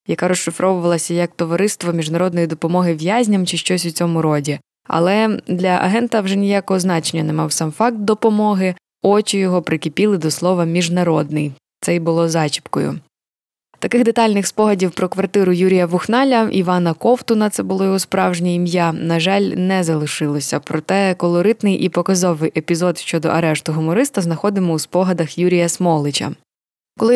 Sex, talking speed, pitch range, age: female, 145 wpm, 170-200 Hz, 20-39